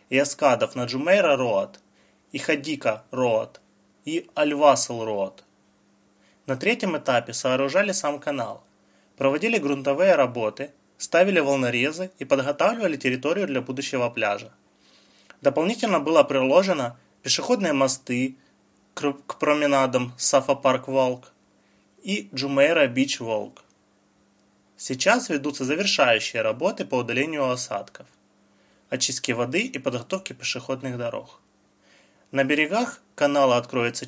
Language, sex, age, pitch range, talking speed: Russian, male, 20-39, 115-145 Hz, 95 wpm